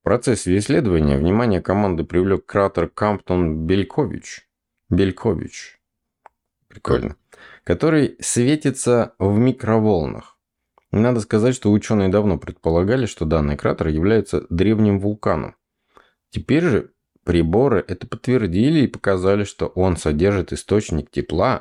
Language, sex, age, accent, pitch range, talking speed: Russian, male, 20-39, native, 85-120 Hz, 105 wpm